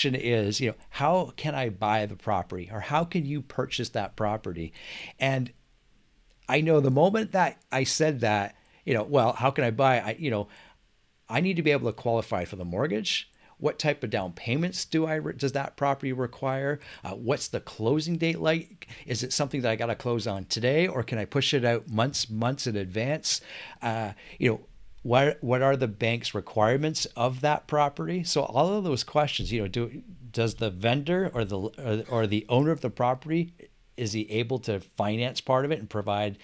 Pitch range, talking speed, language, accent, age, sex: 110-145 Hz, 205 wpm, English, American, 40-59, male